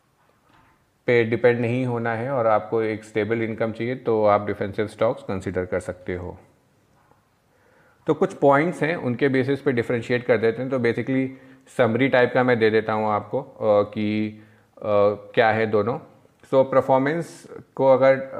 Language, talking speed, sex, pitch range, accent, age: Hindi, 160 wpm, male, 110-130 Hz, native, 30-49